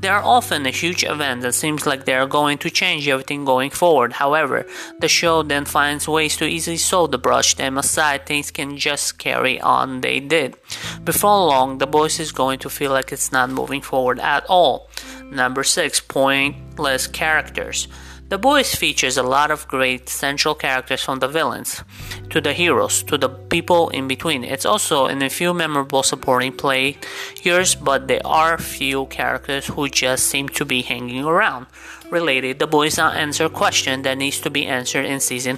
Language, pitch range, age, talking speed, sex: English, 130-160 Hz, 30-49, 185 wpm, male